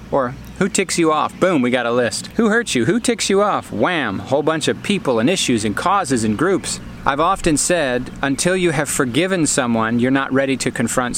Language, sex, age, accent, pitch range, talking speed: English, male, 40-59, American, 125-155 Hz, 220 wpm